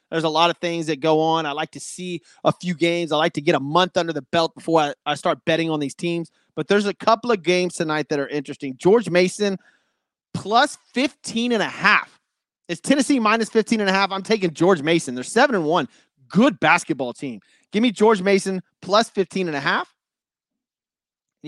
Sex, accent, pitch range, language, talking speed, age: male, American, 165-225 Hz, English, 210 wpm, 30-49